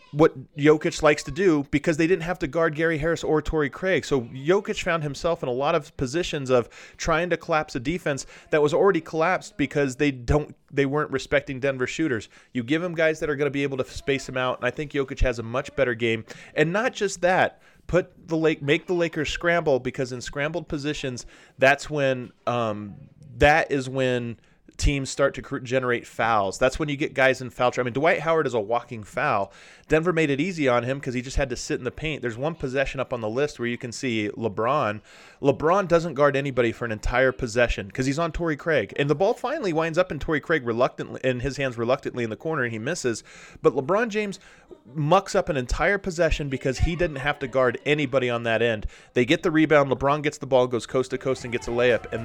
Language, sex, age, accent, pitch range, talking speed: English, male, 30-49, American, 125-160 Hz, 235 wpm